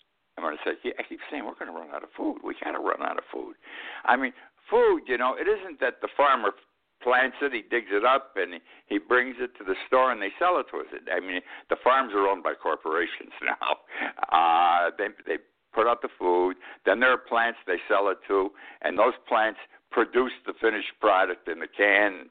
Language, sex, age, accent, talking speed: English, male, 60-79, American, 215 wpm